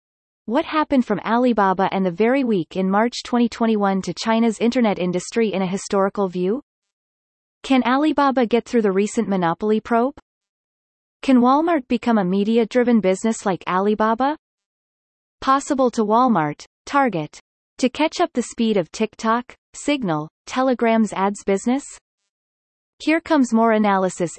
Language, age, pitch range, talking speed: English, 30-49, 190-245 Hz, 135 wpm